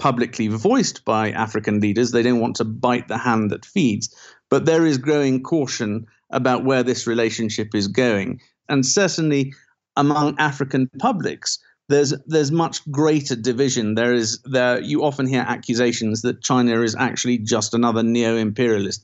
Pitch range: 115-135 Hz